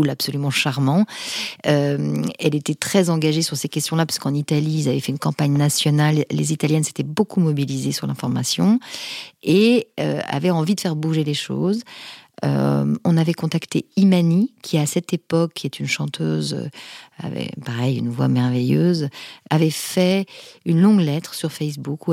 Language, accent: French, French